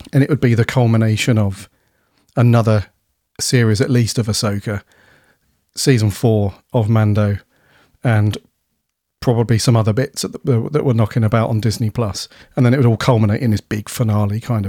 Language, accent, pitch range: English, British, 105-125 Hz